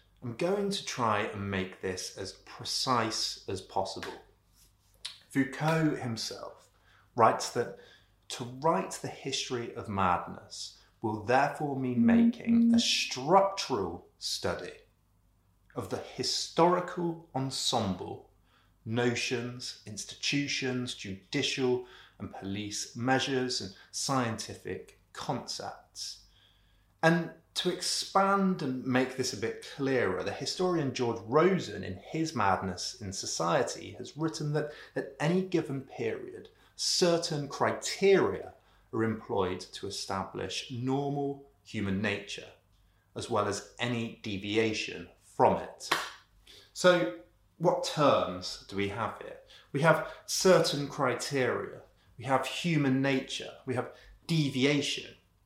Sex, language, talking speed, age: male, English, 110 wpm, 30-49